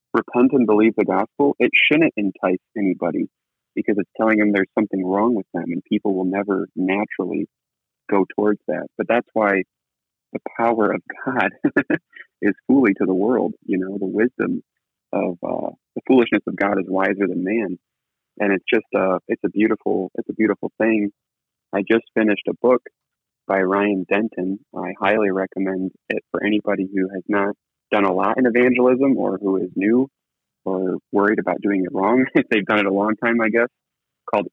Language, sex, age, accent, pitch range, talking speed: English, male, 30-49, American, 100-115 Hz, 180 wpm